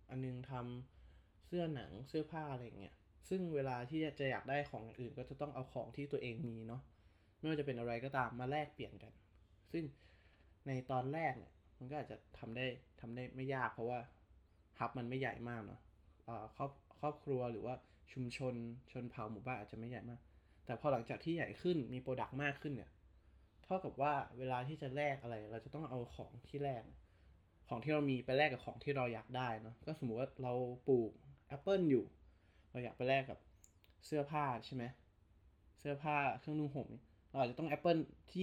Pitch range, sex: 105-140 Hz, male